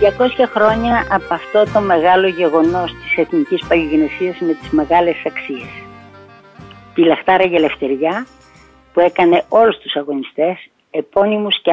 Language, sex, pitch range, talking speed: Greek, female, 160-210 Hz, 125 wpm